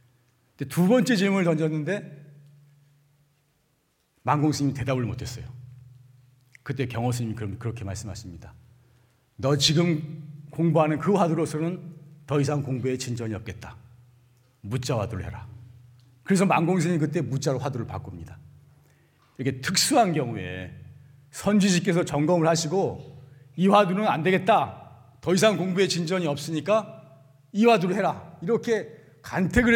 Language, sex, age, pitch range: Korean, male, 40-59, 125-180 Hz